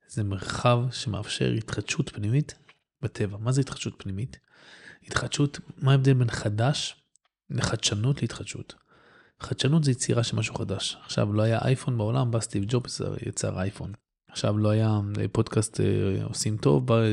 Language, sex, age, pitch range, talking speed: Hebrew, male, 20-39, 105-135 Hz, 140 wpm